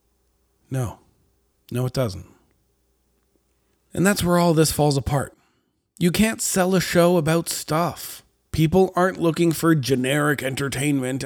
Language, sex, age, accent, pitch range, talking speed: English, male, 40-59, American, 120-155 Hz, 130 wpm